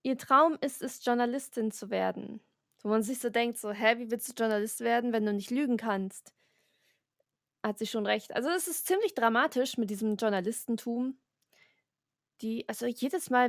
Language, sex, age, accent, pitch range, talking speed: German, female, 20-39, German, 210-255 Hz, 180 wpm